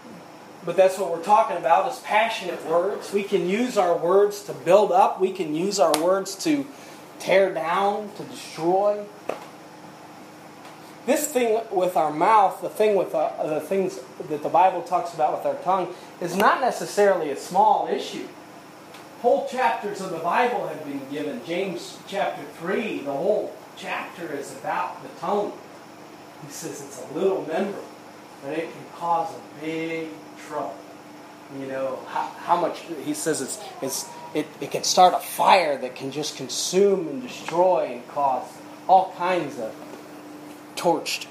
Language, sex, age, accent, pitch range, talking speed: English, male, 30-49, American, 165-205 Hz, 160 wpm